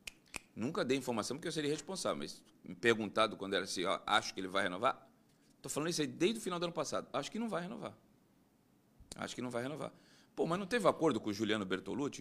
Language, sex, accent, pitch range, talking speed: Portuguese, male, Brazilian, 105-155 Hz, 235 wpm